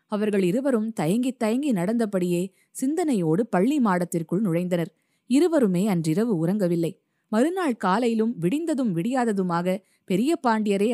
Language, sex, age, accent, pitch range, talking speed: Tamil, female, 20-39, native, 170-230 Hz, 100 wpm